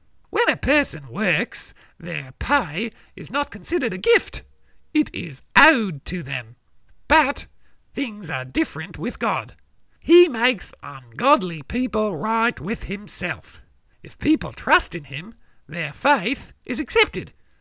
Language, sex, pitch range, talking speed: English, male, 180-285 Hz, 130 wpm